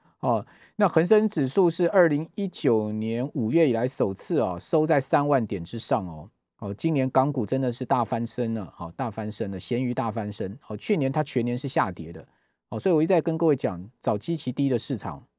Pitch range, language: 110-150 Hz, Chinese